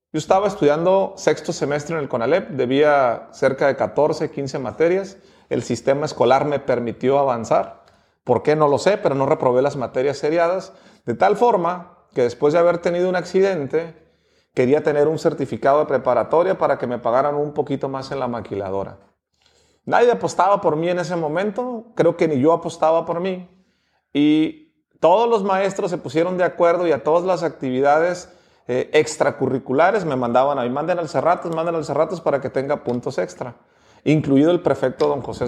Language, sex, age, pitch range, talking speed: English, male, 40-59, 145-190 Hz, 180 wpm